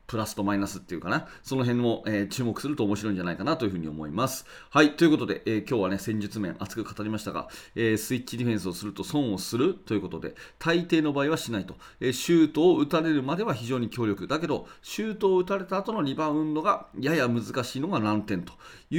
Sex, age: male, 30-49